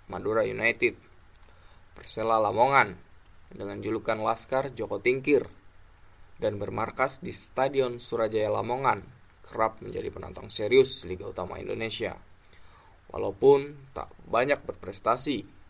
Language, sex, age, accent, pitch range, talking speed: Indonesian, male, 10-29, native, 95-135 Hz, 100 wpm